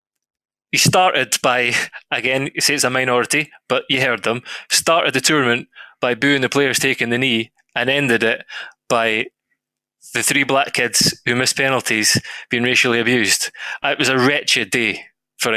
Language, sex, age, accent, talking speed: English, male, 20-39, British, 165 wpm